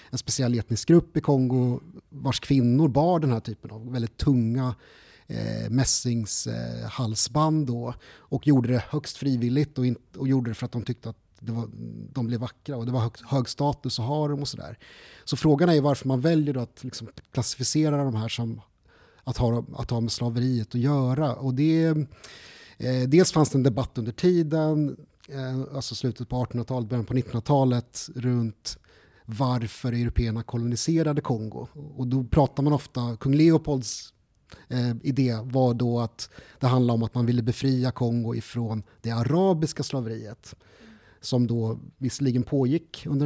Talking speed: 170 wpm